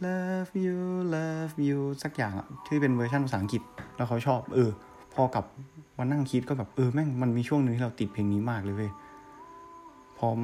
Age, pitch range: 20-39, 100-135 Hz